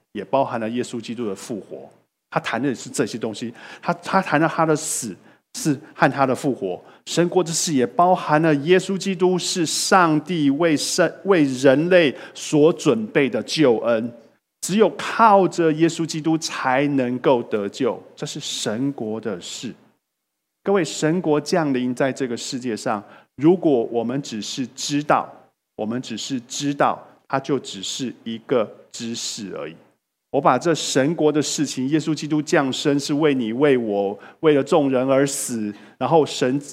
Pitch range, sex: 130-165 Hz, male